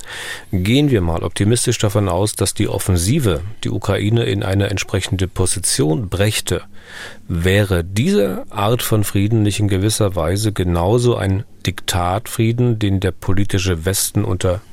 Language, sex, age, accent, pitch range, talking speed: German, male, 40-59, German, 90-110 Hz, 135 wpm